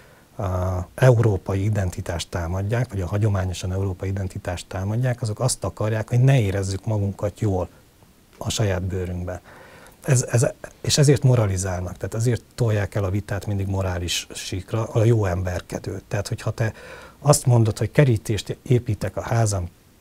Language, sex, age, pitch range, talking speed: Hungarian, male, 60-79, 95-125 Hz, 145 wpm